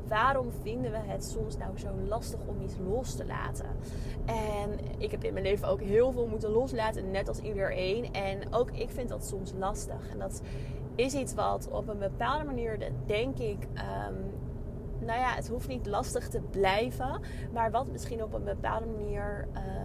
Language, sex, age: Dutch, female, 20-39